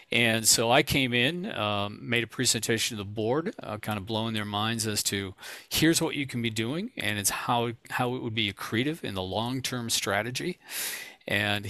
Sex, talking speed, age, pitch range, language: male, 200 wpm, 50-69, 105-115 Hz, English